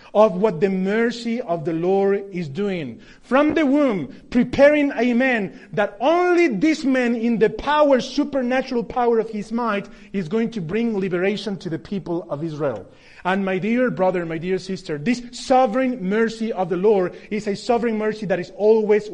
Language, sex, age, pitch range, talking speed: English, male, 30-49, 180-235 Hz, 180 wpm